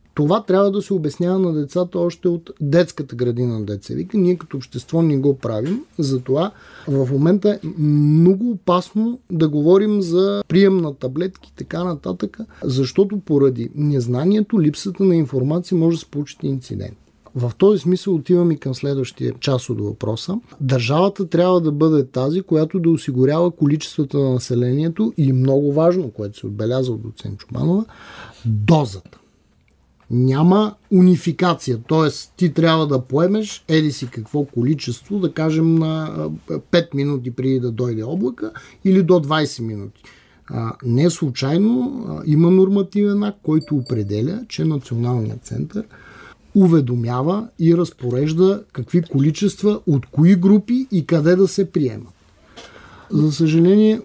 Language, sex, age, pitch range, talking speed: Bulgarian, male, 30-49, 130-180 Hz, 140 wpm